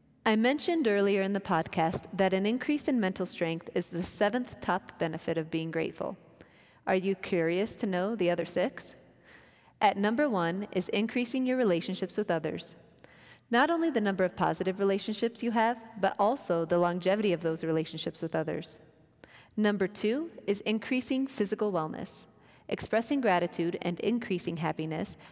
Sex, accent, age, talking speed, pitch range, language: female, American, 30-49, 155 wpm, 170-220 Hz, English